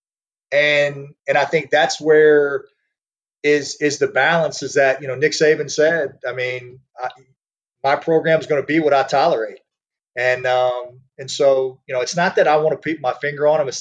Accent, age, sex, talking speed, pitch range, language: American, 40-59, male, 205 wpm, 135-170 Hz, English